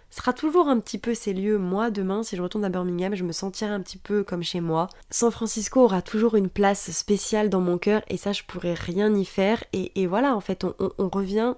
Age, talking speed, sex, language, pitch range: 20-39, 255 wpm, female, French, 185-210 Hz